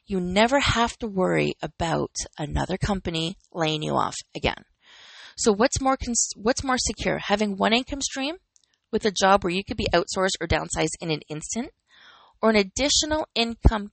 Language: English